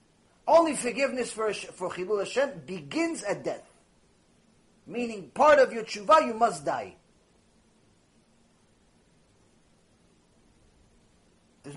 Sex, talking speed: male, 90 wpm